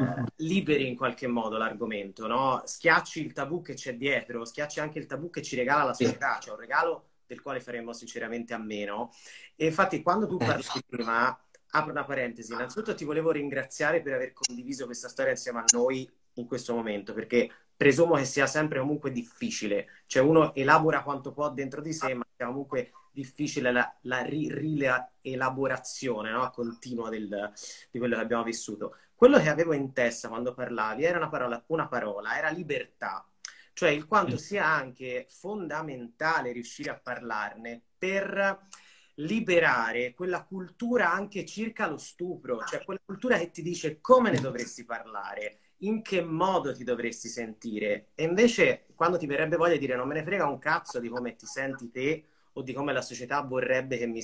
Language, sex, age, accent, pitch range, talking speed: Italian, male, 30-49, native, 120-165 Hz, 175 wpm